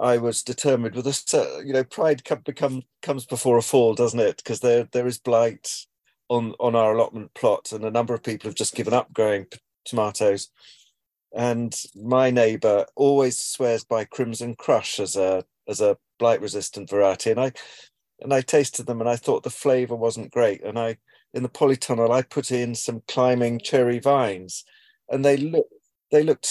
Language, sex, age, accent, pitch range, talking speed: English, male, 40-59, British, 115-140 Hz, 180 wpm